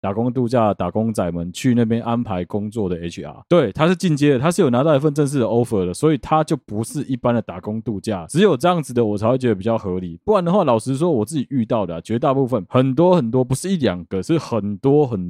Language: Chinese